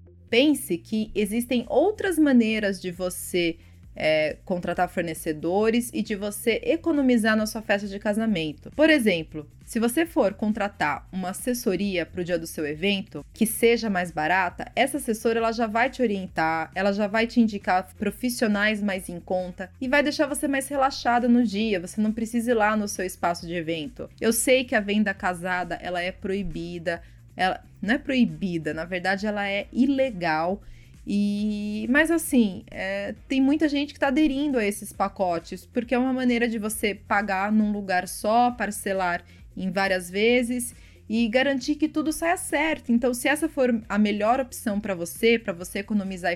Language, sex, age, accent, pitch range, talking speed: Portuguese, female, 20-39, Brazilian, 185-245 Hz, 175 wpm